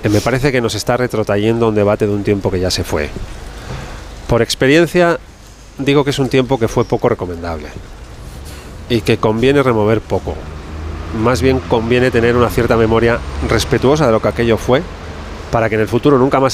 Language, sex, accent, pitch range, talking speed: Spanish, male, Spanish, 95-120 Hz, 185 wpm